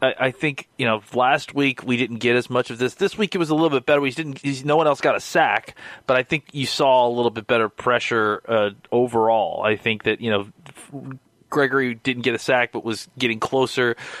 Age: 30-49